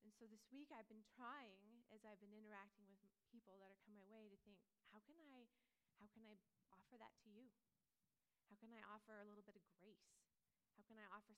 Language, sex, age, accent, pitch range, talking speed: English, female, 30-49, American, 205-250 Hz, 230 wpm